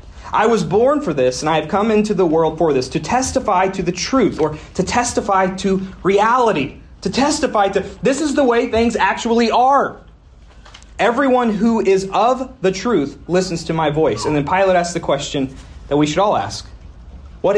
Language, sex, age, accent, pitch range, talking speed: English, male, 30-49, American, 150-215 Hz, 190 wpm